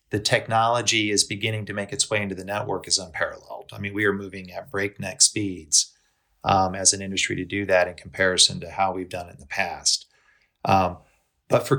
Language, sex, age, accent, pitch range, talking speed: English, male, 40-59, American, 95-115 Hz, 210 wpm